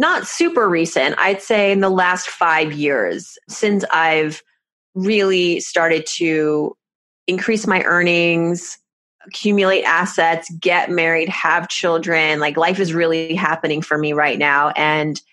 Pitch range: 160-190 Hz